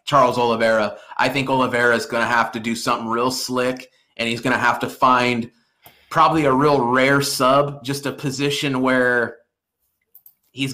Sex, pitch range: male, 125-145 Hz